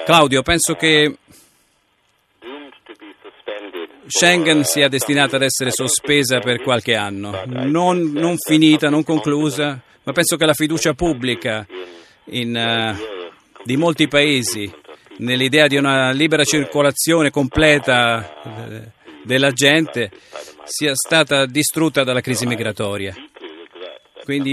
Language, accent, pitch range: Italian, native, 115-150 Hz